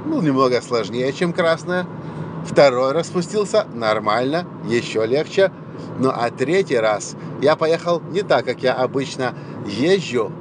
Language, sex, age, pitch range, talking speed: Russian, male, 50-69, 145-175 Hz, 125 wpm